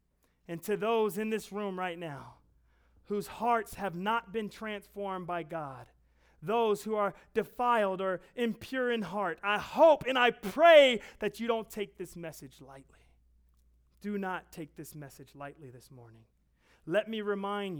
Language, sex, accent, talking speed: English, male, American, 160 wpm